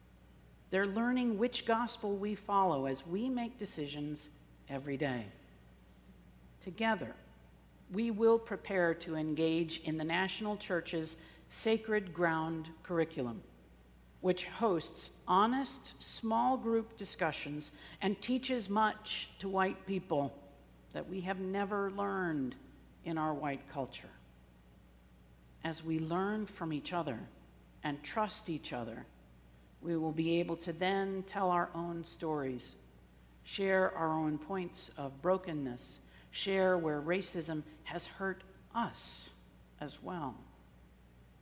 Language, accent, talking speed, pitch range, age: English, American, 115 wpm, 120-190 Hz, 50-69